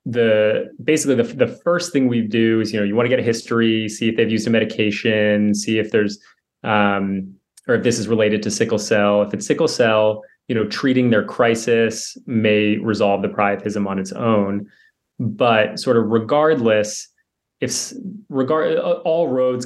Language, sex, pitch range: English, male, 105-115 Hz